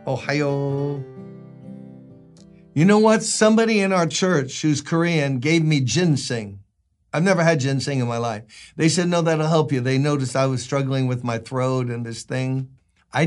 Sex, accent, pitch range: male, American, 125-165 Hz